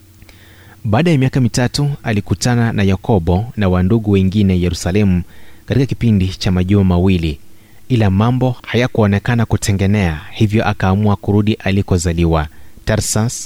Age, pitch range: 30-49, 95-110 Hz